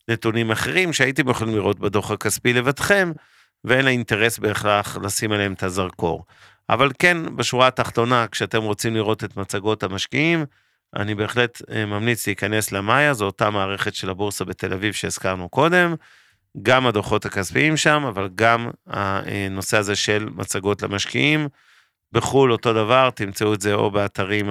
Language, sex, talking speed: Hebrew, male, 145 wpm